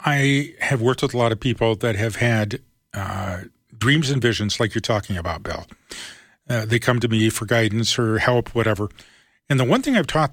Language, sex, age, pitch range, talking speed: English, male, 40-59, 115-135 Hz, 210 wpm